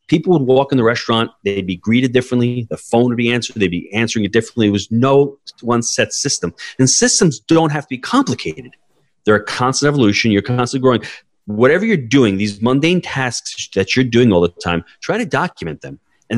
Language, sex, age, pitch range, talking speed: English, male, 30-49, 100-125 Hz, 210 wpm